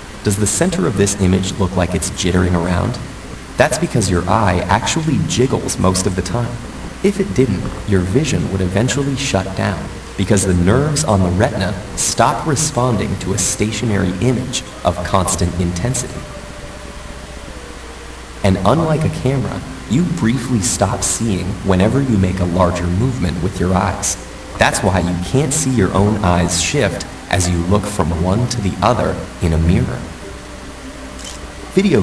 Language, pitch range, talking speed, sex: English, 90-120 Hz, 155 wpm, male